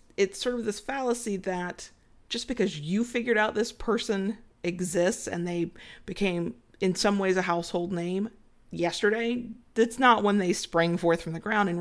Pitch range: 175-225 Hz